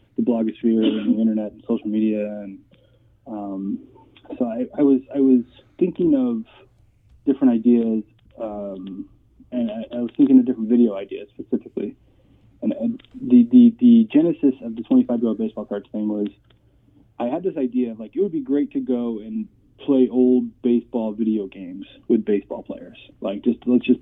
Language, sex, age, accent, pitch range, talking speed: English, male, 20-39, American, 110-140 Hz, 175 wpm